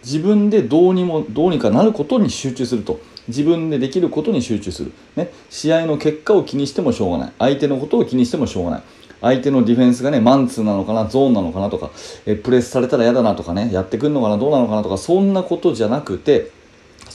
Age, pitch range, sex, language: 30-49, 120-185 Hz, male, Japanese